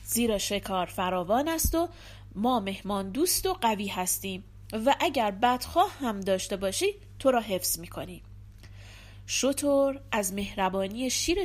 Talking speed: 130 wpm